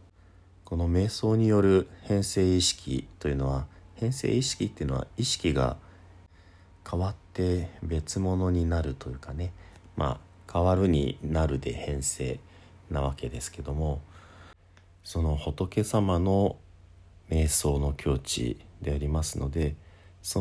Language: Japanese